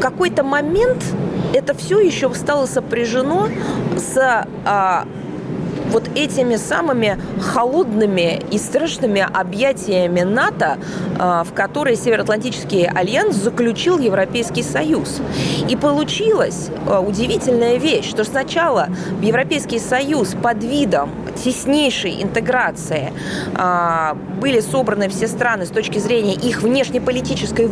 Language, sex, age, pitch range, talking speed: Russian, female, 20-39, 200-270 Hz, 95 wpm